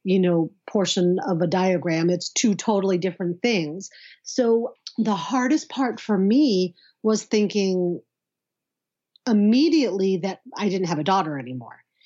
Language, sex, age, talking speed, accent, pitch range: English, female, 40-59, 135 wpm, American, 180-220 Hz